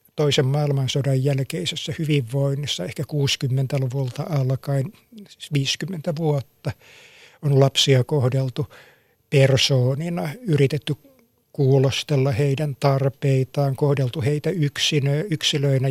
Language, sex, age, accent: Finnish, male, 60-79, native